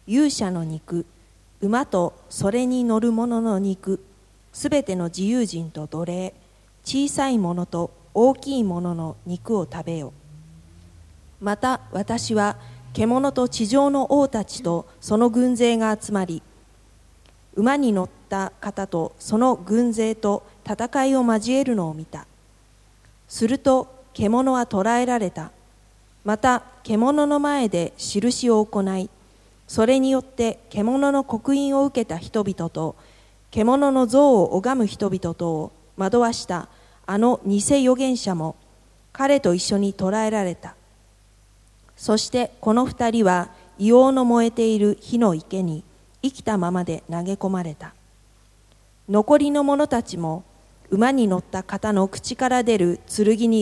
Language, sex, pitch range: Japanese, female, 170-245 Hz